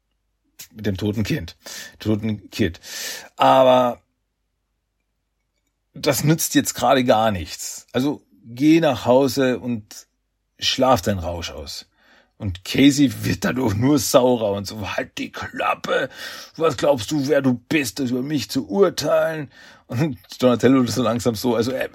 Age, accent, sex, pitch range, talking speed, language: 40-59, German, male, 105-140 Hz, 140 wpm, German